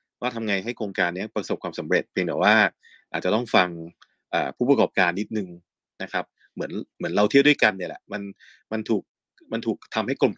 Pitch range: 95-120 Hz